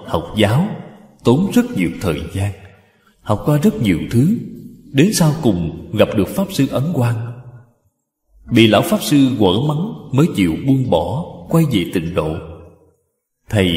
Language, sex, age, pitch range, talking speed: Vietnamese, male, 20-39, 100-145 Hz, 155 wpm